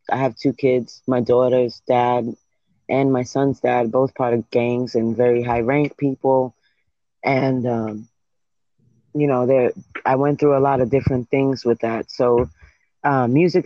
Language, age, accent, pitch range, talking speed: English, 30-49, American, 120-135 Hz, 165 wpm